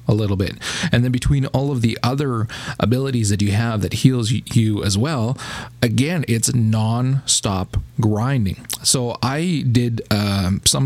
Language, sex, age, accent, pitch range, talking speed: English, male, 30-49, American, 105-130 Hz, 155 wpm